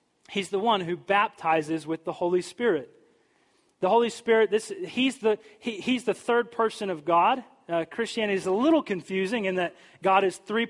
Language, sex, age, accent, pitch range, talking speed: English, male, 30-49, American, 170-215 Hz, 185 wpm